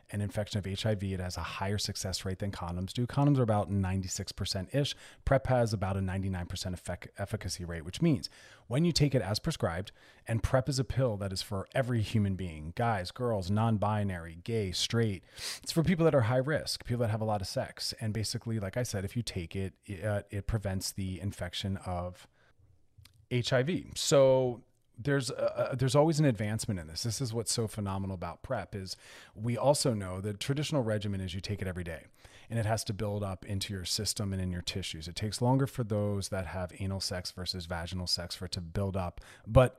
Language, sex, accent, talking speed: English, male, American, 205 wpm